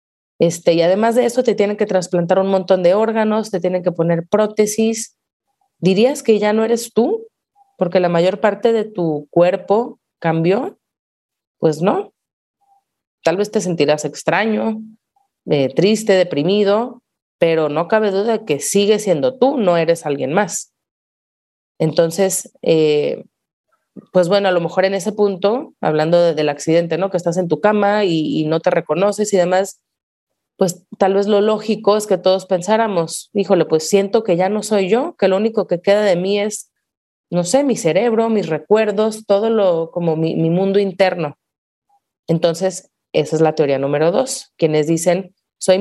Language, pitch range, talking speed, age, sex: Spanish, 170-215 Hz, 170 wpm, 30-49, female